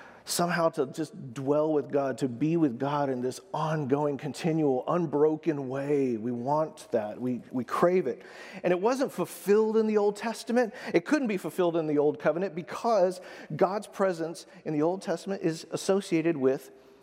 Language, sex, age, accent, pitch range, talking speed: English, male, 50-69, American, 150-195 Hz, 175 wpm